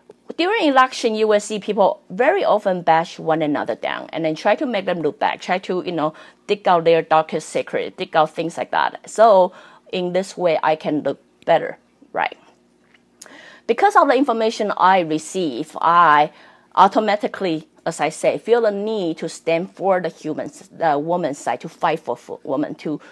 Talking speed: 180 wpm